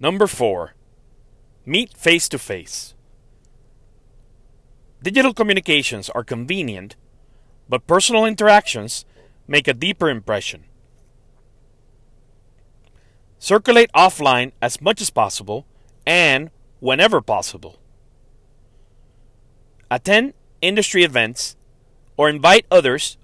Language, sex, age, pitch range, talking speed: English, male, 40-59, 120-150 Hz, 75 wpm